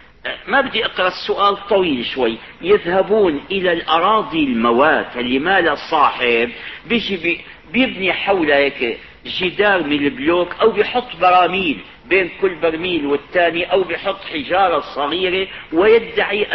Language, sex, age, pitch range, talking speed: Arabic, male, 50-69, 160-210 Hz, 110 wpm